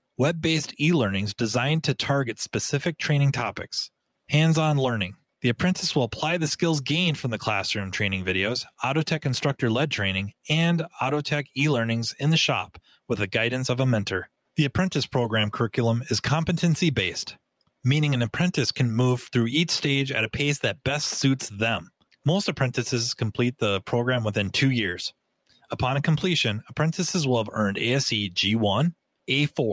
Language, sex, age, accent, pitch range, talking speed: English, male, 30-49, American, 110-145 Hz, 165 wpm